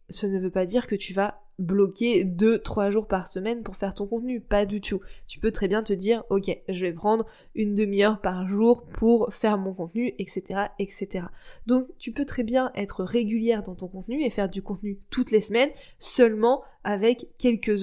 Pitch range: 195-235 Hz